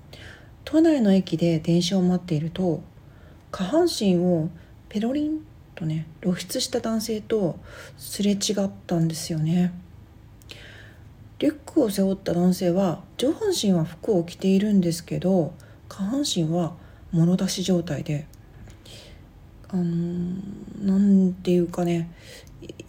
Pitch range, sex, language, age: 170-220 Hz, female, Japanese, 40-59